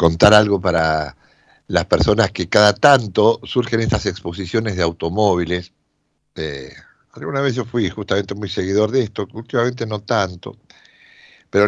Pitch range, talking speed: 90-125 Hz, 140 wpm